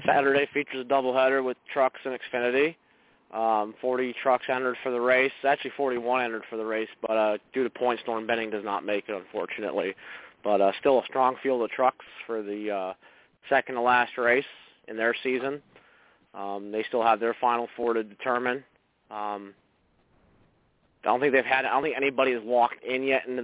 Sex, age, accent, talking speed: male, 20-39, American, 190 wpm